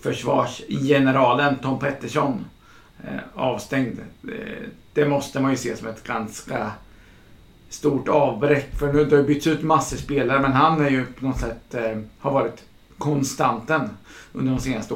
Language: English